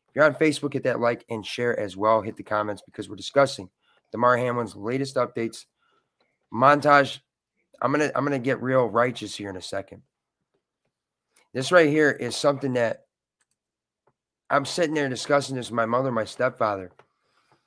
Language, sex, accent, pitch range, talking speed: English, male, American, 125-160 Hz, 170 wpm